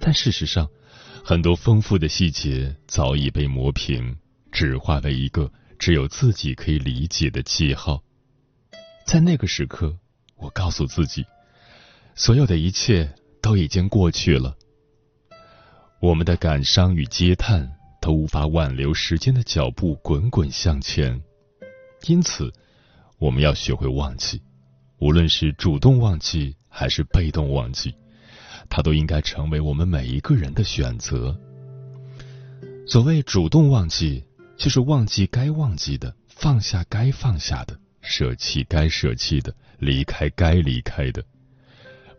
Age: 30-49